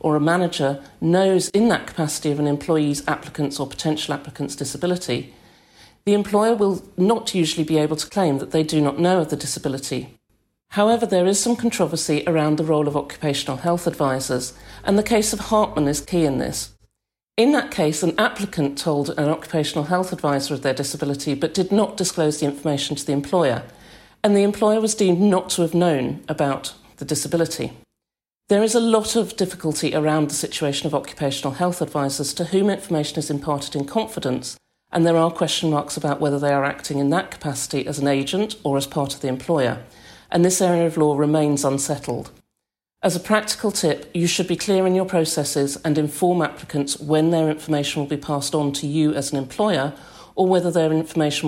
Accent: British